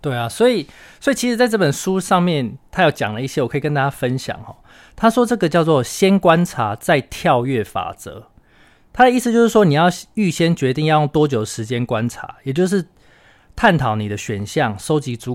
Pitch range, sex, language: 115-170 Hz, male, Chinese